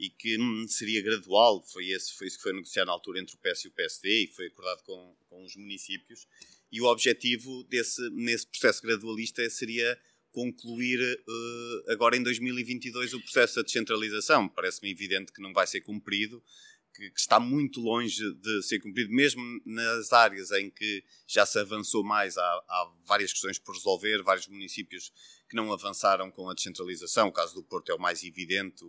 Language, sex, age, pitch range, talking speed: Portuguese, male, 30-49, 105-125 Hz, 185 wpm